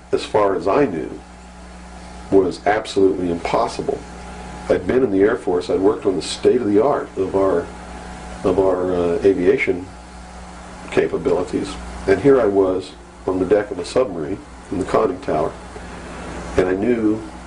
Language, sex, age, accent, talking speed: English, male, 50-69, American, 160 wpm